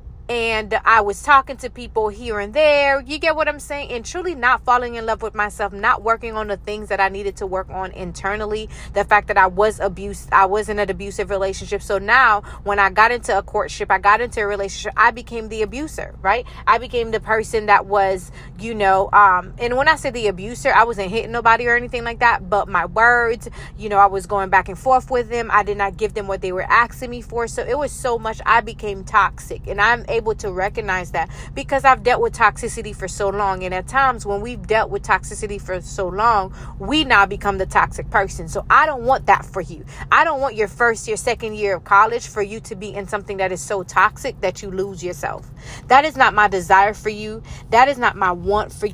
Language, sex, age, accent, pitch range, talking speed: English, female, 20-39, American, 195-240 Hz, 240 wpm